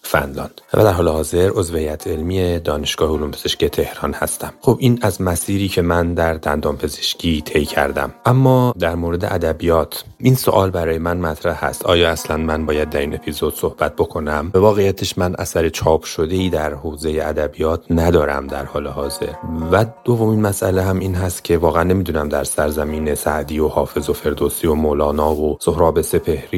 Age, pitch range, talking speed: 30-49, 75-90 Hz, 165 wpm